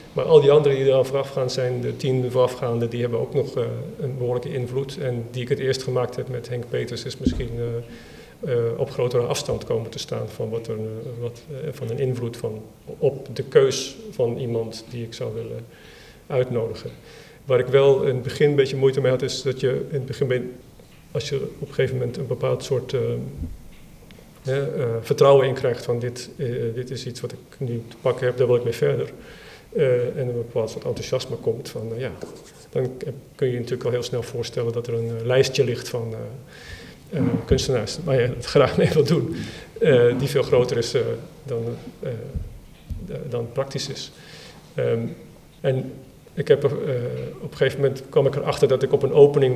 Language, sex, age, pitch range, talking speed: Dutch, male, 50-69, 120-135 Hz, 210 wpm